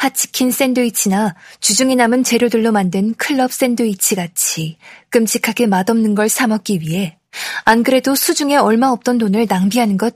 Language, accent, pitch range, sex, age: Korean, native, 195-245 Hz, female, 20-39